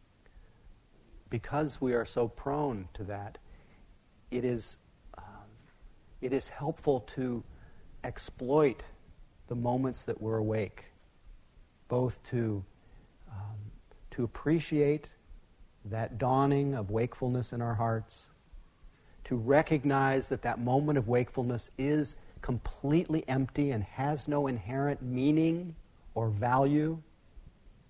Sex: male